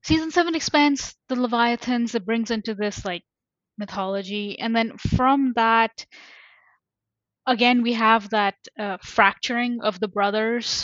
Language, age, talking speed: English, 10-29, 135 wpm